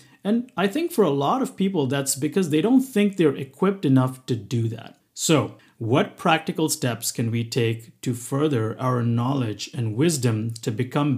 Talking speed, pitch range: 185 wpm, 135-180 Hz